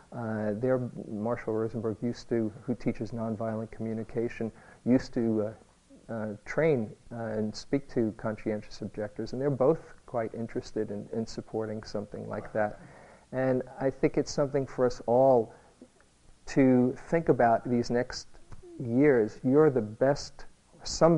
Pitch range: 110-125 Hz